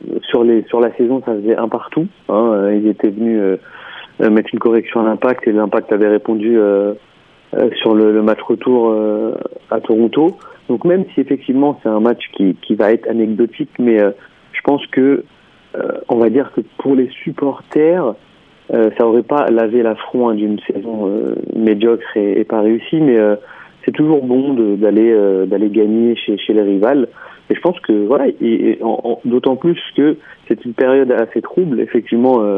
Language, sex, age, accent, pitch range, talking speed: French, male, 40-59, French, 110-125 Hz, 190 wpm